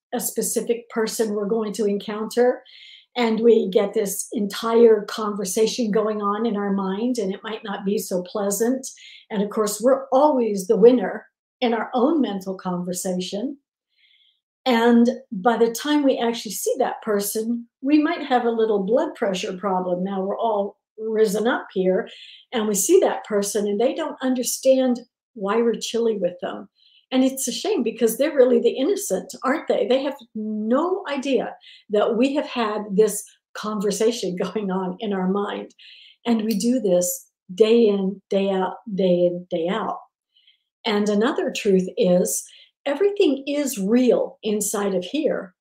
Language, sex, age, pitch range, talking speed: English, female, 60-79, 205-255 Hz, 160 wpm